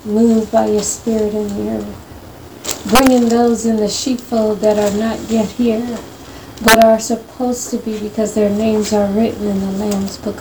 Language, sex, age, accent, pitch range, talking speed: English, female, 40-59, American, 210-245 Hz, 180 wpm